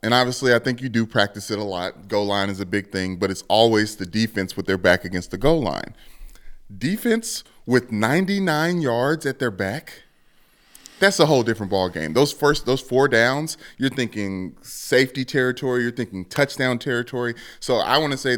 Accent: American